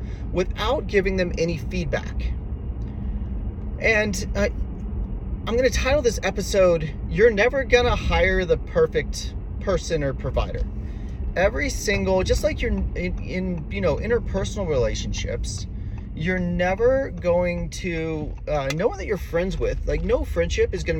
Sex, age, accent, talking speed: male, 30-49, American, 140 wpm